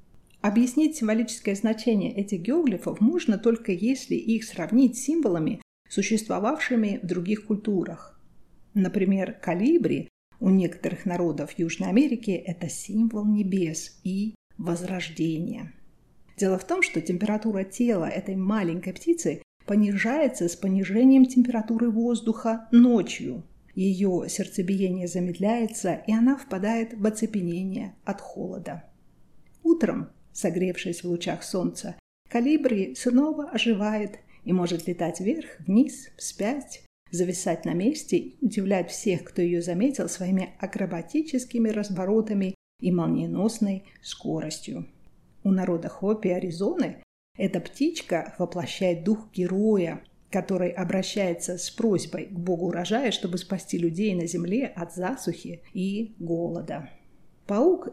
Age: 40-59